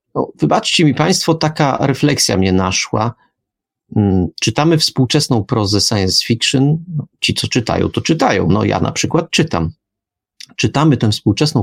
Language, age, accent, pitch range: Polish, 30-49, native, 105-145 Hz